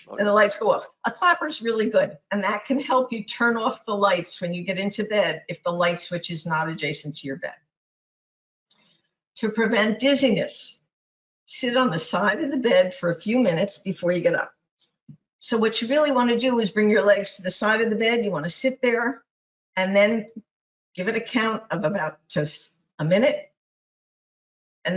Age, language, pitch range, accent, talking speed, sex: 50-69, English, 175-235 Hz, American, 205 wpm, female